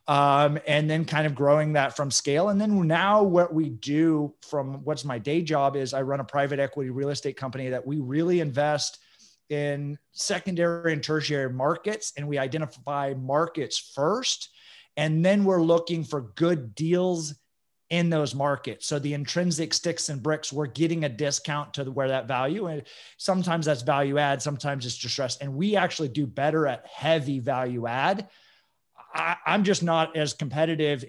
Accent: American